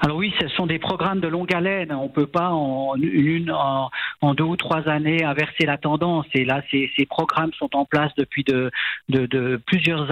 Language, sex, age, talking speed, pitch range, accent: French, male, 50-69, 210 wpm, 140-165 Hz, French